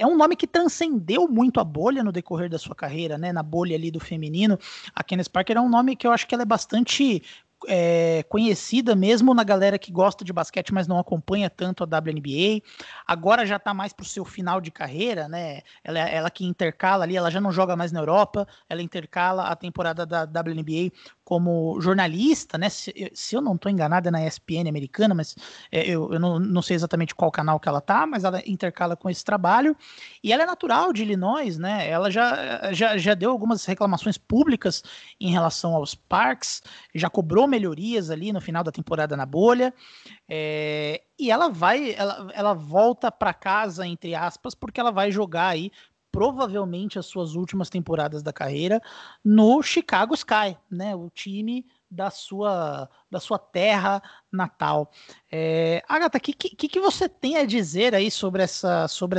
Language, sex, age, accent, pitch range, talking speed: Portuguese, male, 20-39, Brazilian, 170-220 Hz, 190 wpm